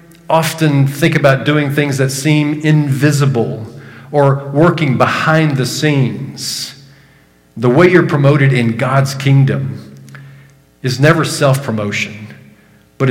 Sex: male